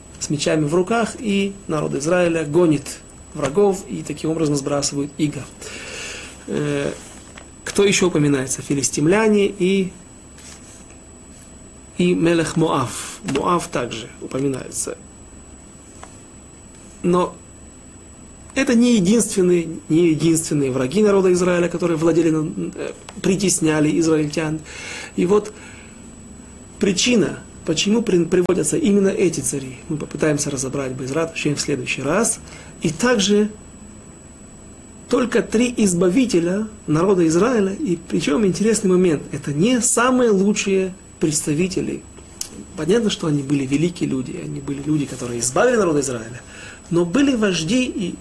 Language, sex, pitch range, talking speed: Russian, male, 140-195 Hz, 105 wpm